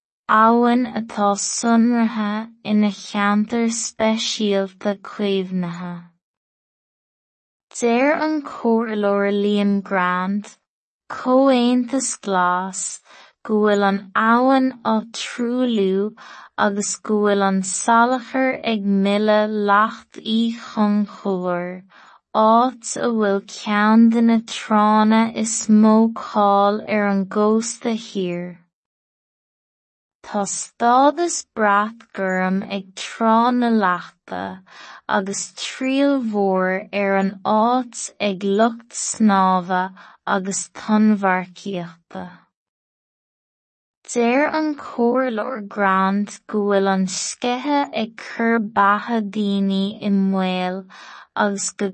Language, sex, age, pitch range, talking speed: English, female, 20-39, 195-230 Hz, 75 wpm